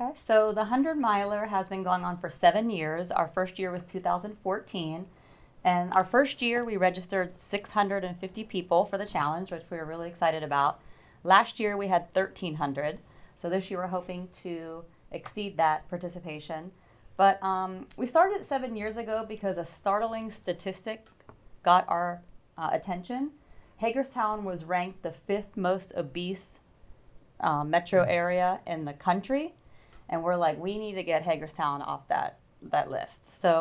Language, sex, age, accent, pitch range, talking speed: English, female, 30-49, American, 165-205 Hz, 155 wpm